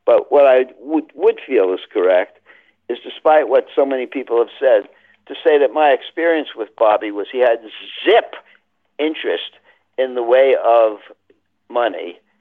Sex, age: male, 60-79